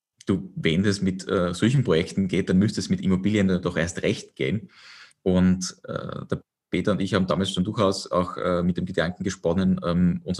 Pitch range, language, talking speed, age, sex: 90-95 Hz, German, 200 wpm, 20-39, male